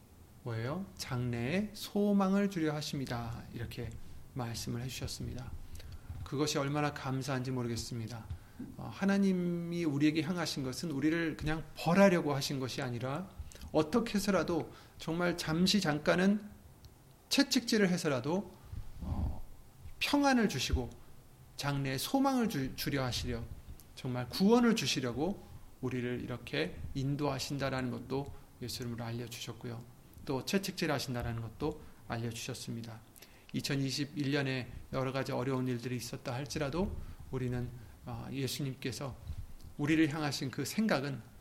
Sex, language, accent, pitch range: male, Korean, native, 120-165 Hz